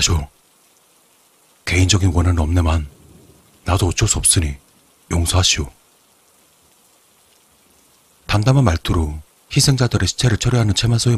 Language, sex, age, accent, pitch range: Korean, male, 40-59, native, 85-115 Hz